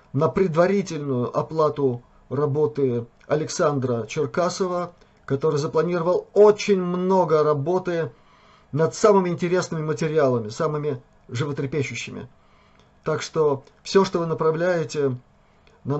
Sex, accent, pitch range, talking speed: male, native, 130-165 Hz, 90 wpm